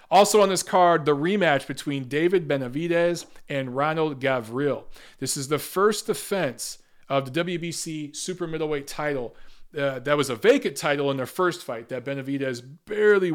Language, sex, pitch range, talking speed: English, male, 130-170 Hz, 160 wpm